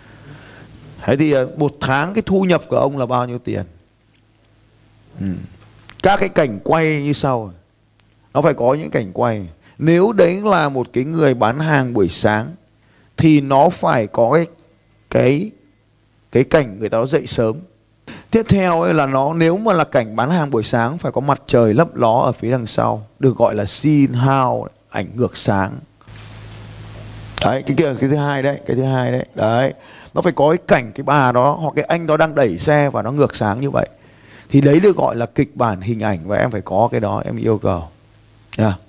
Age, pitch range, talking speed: 30-49, 110-145 Hz, 200 wpm